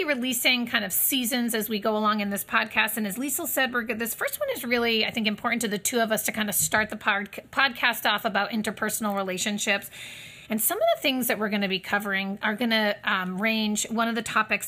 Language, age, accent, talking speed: English, 30-49, American, 235 wpm